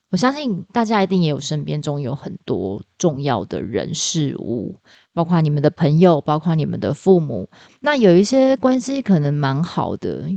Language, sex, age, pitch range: Chinese, female, 20-39, 155-205 Hz